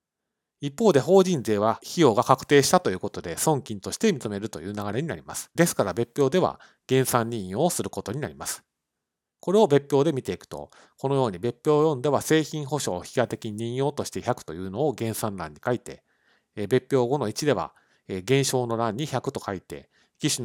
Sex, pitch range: male, 105-145 Hz